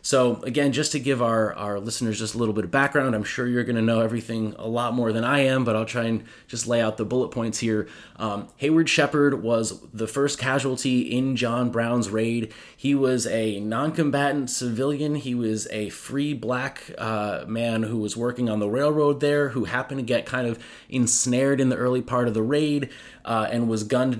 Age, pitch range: 30-49, 110-135 Hz